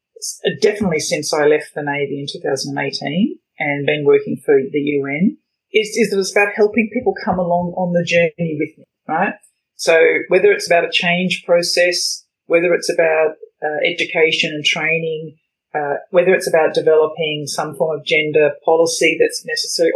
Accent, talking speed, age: Australian, 165 wpm, 40-59